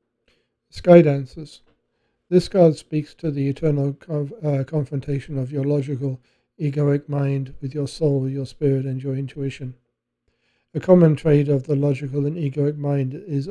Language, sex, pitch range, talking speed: English, male, 140-155 Hz, 145 wpm